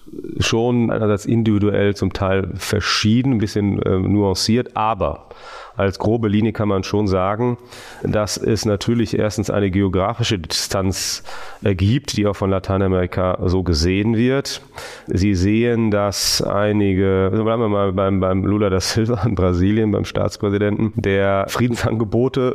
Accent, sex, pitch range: German, male, 95-110 Hz